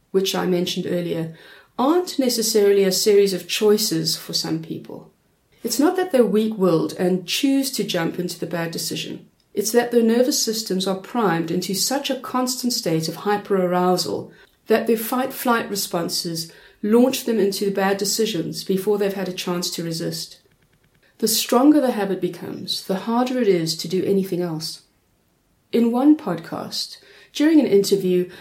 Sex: female